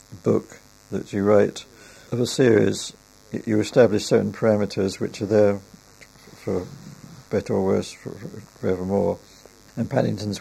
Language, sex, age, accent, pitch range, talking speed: English, male, 60-79, British, 100-120 Hz, 125 wpm